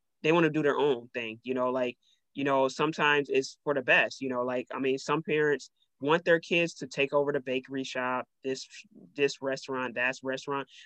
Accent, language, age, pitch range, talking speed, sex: American, English, 20-39, 130-160 Hz, 210 wpm, male